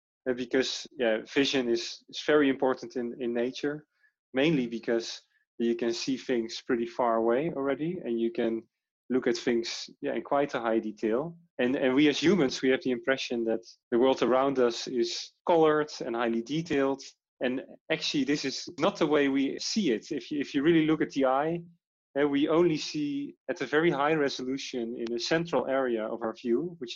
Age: 30-49